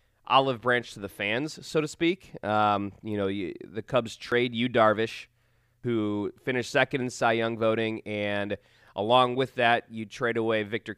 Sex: male